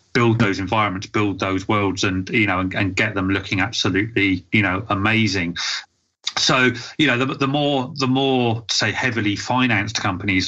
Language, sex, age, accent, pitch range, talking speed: English, male, 30-49, British, 100-120 Hz, 170 wpm